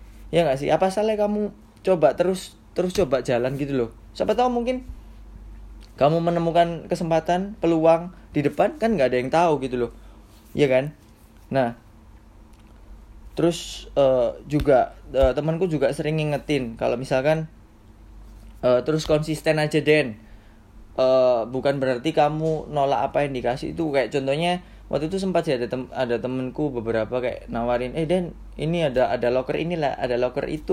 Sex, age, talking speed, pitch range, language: male, 20-39, 150 wpm, 120-165 Hz, Indonesian